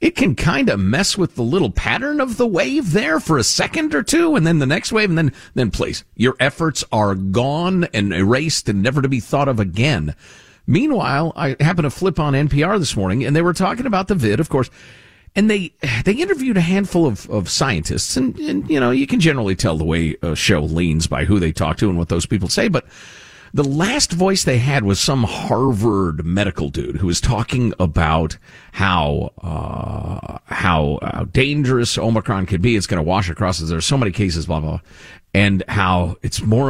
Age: 50-69